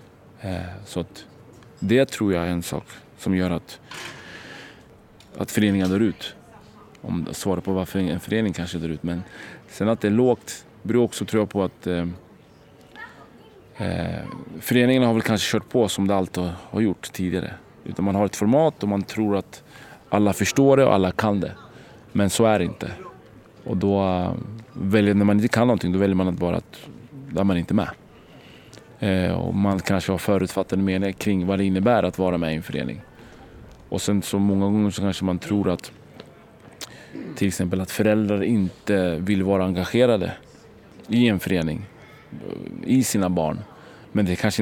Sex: male